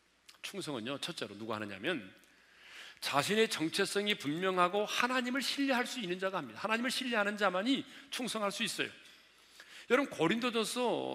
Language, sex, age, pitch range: Korean, male, 40-59, 190-265 Hz